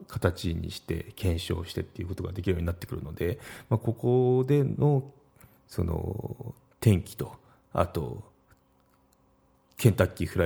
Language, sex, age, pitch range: Japanese, male, 30-49, 95-120 Hz